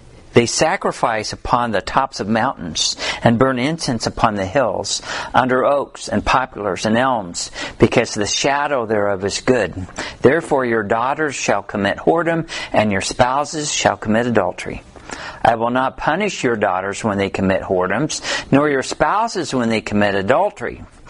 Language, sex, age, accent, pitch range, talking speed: English, male, 50-69, American, 110-160 Hz, 155 wpm